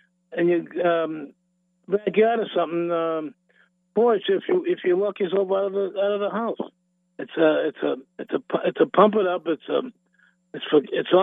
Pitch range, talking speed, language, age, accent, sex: 165-185 Hz, 205 wpm, English, 50-69, American, male